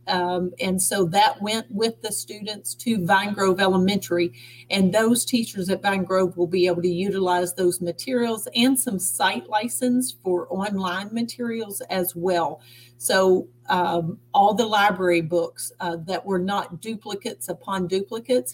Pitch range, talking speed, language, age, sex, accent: 170-205 Hz, 150 wpm, English, 40-59, female, American